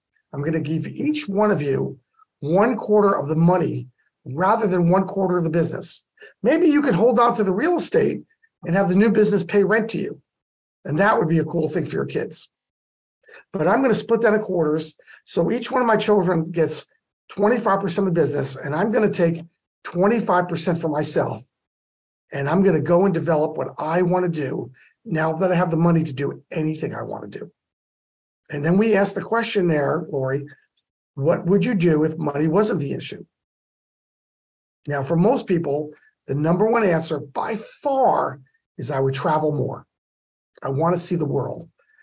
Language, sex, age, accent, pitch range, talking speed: English, male, 50-69, American, 155-210 Hz, 195 wpm